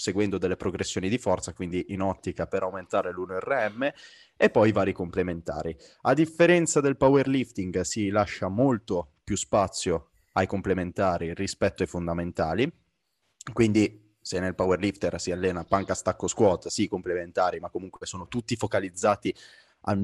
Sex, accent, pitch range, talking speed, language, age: male, native, 95-115 Hz, 145 wpm, Italian, 20-39